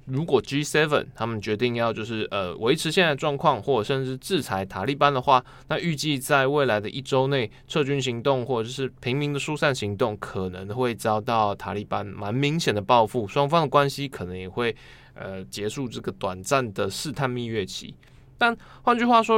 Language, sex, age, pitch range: Chinese, male, 20-39, 110-145 Hz